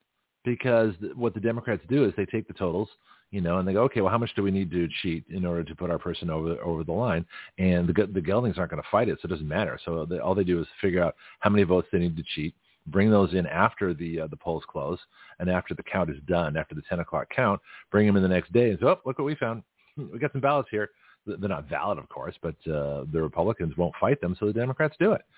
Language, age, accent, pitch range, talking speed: English, 40-59, American, 85-130 Hz, 275 wpm